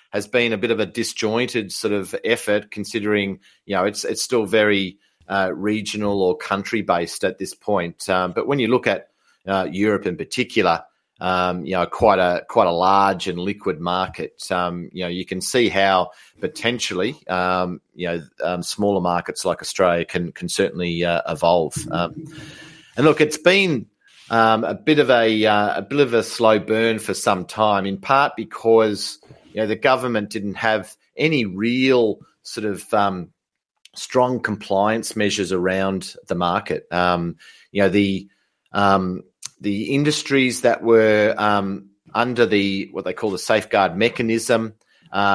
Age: 40-59